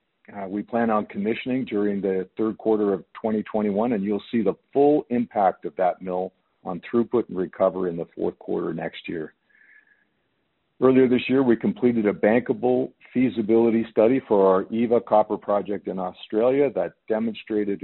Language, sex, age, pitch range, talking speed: English, male, 50-69, 95-120 Hz, 160 wpm